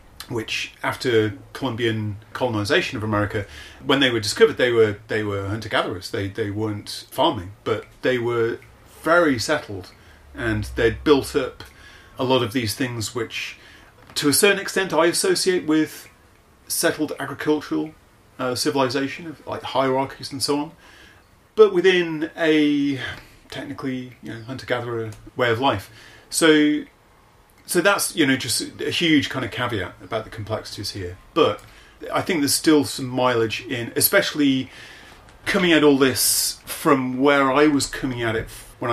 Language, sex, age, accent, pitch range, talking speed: English, male, 30-49, British, 105-140 Hz, 150 wpm